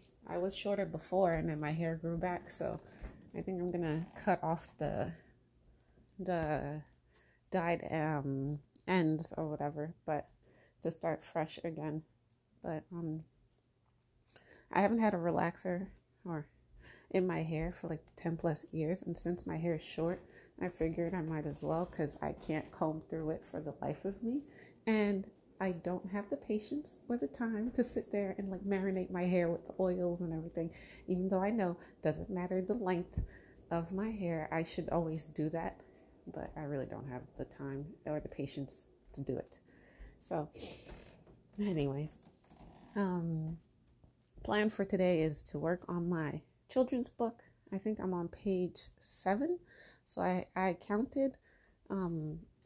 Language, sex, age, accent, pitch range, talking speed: English, female, 30-49, American, 155-190 Hz, 165 wpm